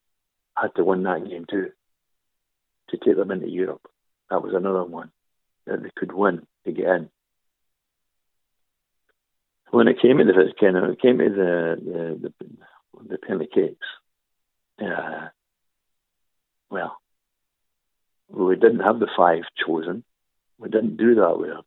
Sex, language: male, English